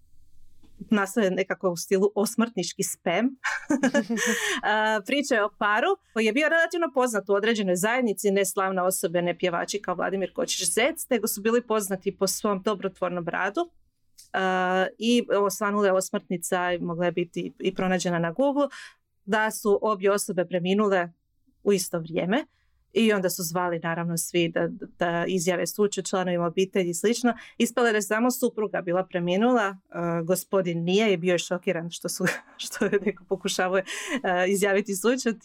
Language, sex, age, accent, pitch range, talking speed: Croatian, female, 30-49, native, 185-215 Hz, 145 wpm